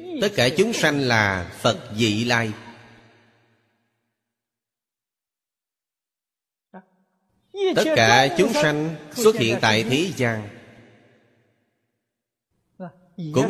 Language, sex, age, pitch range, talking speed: Vietnamese, male, 30-49, 115-135 Hz, 80 wpm